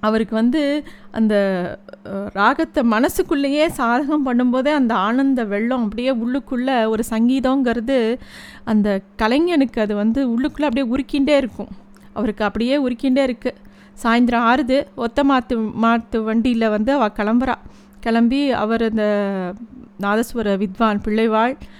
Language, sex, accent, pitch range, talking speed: Tamil, female, native, 210-260 Hz, 110 wpm